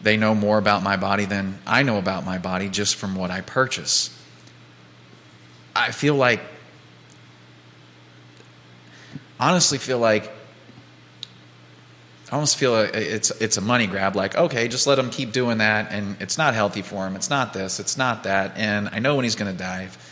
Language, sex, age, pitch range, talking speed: English, male, 30-49, 95-125 Hz, 175 wpm